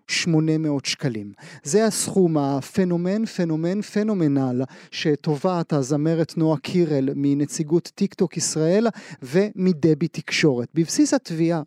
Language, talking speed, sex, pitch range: Hebrew, 100 wpm, male, 155-200 Hz